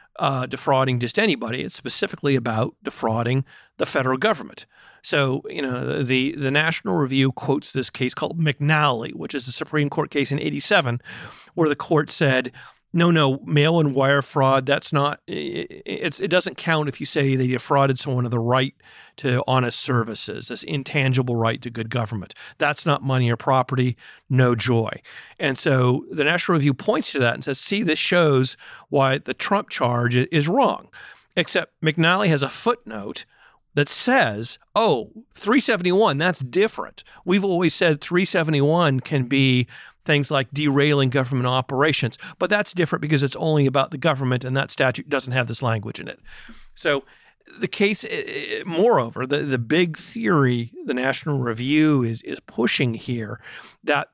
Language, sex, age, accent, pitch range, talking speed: English, male, 40-59, American, 130-160 Hz, 165 wpm